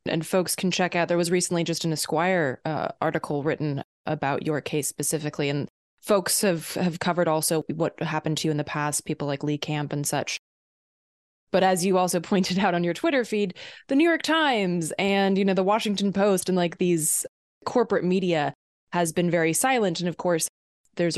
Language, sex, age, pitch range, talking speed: English, female, 20-39, 165-195 Hz, 200 wpm